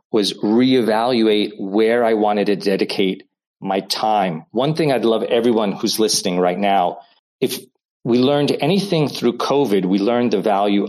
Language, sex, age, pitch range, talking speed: English, male, 40-59, 100-125 Hz, 155 wpm